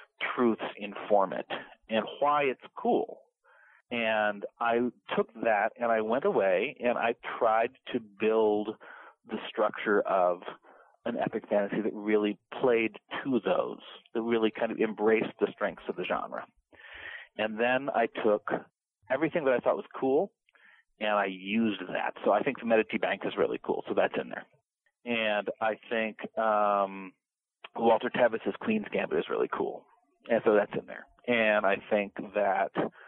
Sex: male